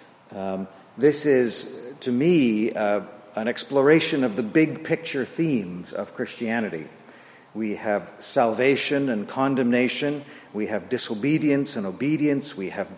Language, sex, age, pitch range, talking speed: English, male, 50-69, 110-140 Hz, 120 wpm